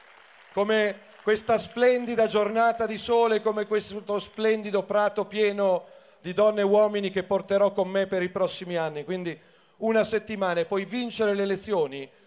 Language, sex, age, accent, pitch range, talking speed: Italian, male, 40-59, native, 195-230 Hz, 150 wpm